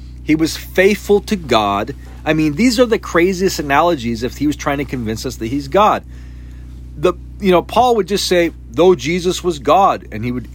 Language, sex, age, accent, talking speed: English, male, 40-59, American, 205 wpm